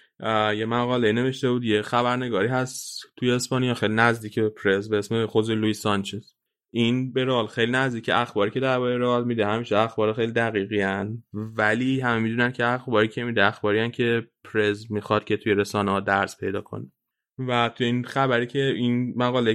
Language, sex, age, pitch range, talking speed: Persian, male, 20-39, 105-125 Hz, 170 wpm